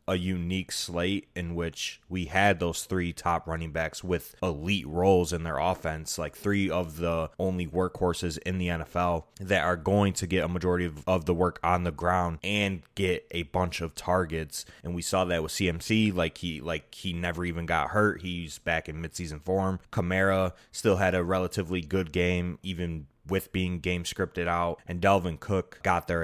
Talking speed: 190 wpm